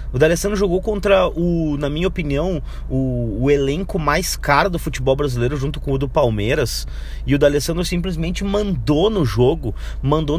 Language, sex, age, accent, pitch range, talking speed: Portuguese, male, 30-49, Brazilian, 125-185 Hz, 170 wpm